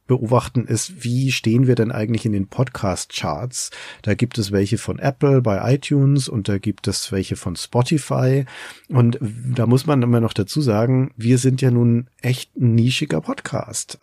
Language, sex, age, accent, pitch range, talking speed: German, male, 40-59, German, 100-125 Hz, 175 wpm